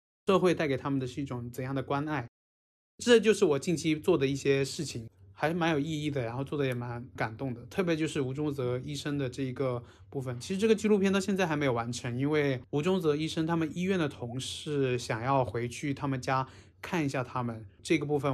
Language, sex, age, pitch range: Chinese, male, 20-39, 125-150 Hz